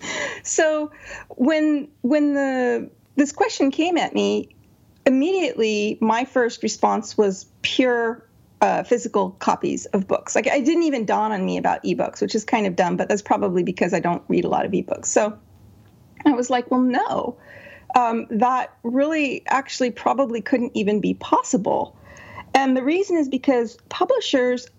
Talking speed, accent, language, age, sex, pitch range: 160 wpm, American, English, 40-59, female, 210-275 Hz